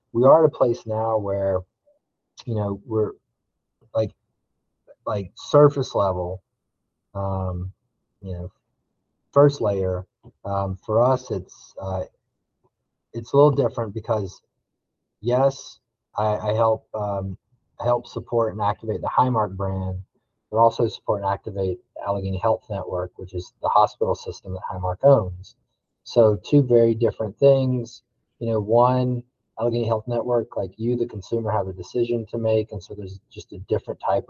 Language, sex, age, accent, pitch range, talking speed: English, male, 30-49, American, 95-115 Hz, 150 wpm